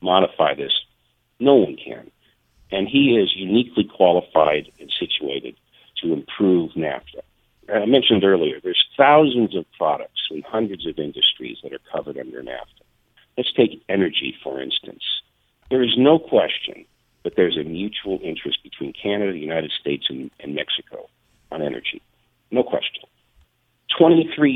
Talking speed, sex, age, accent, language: 145 wpm, male, 50-69, American, English